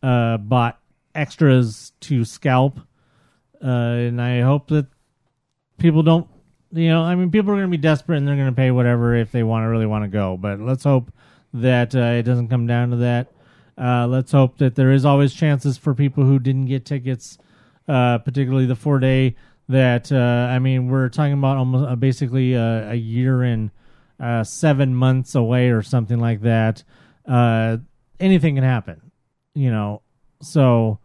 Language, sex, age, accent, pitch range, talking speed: English, male, 30-49, American, 115-140 Hz, 185 wpm